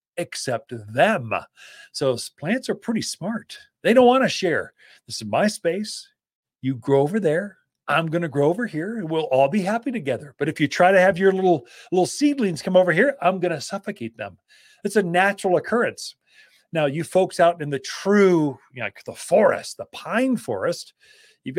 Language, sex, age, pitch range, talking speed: English, male, 40-59, 145-225 Hz, 190 wpm